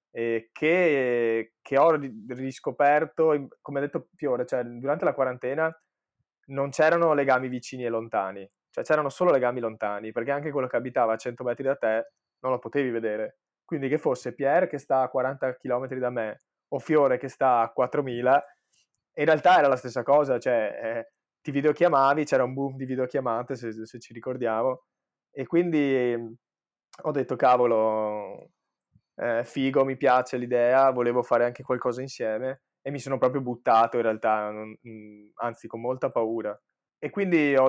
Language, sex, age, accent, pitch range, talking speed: Italian, male, 20-39, native, 115-140 Hz, 160 wpm